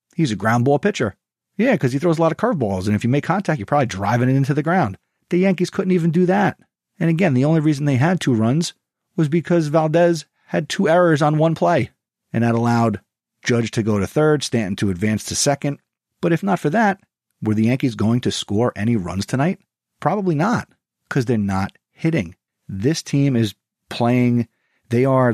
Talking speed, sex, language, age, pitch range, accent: 210 wpm, male, English, 40-59, 105-140 Hz, American